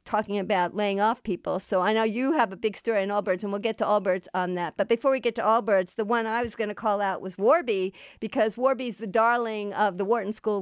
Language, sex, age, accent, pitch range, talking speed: English, female, 50-69, American, 215-285 Hz, 260 wpm